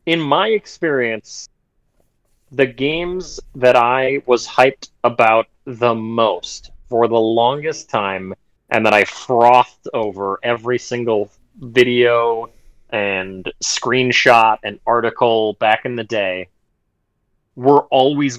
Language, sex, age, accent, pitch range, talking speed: English, male, 30-49, American, 110-135 Hz, 110 wpm